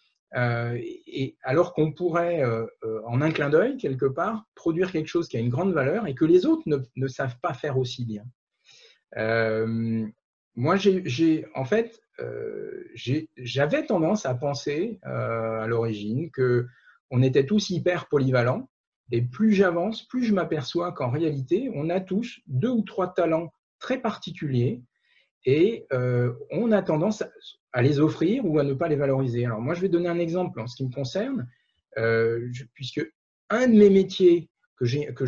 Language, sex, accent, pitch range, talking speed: French, male, French, 125-180 Hz, 180 wpm